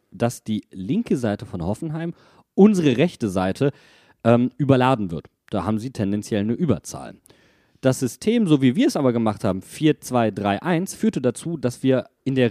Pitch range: 110-155 Hz